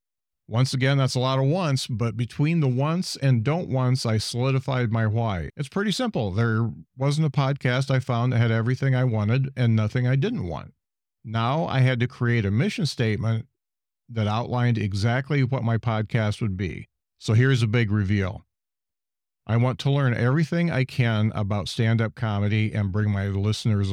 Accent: American